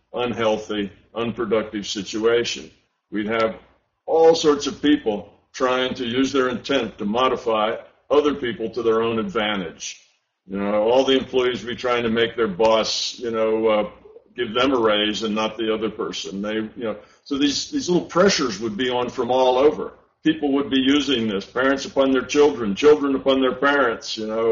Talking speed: 185 wpm